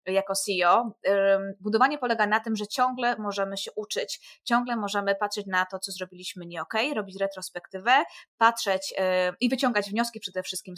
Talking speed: 160 wpm